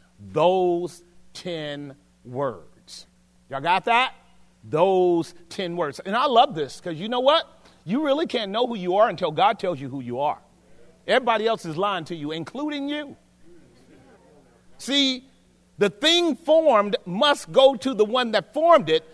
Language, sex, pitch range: English, male, 180-275 Hz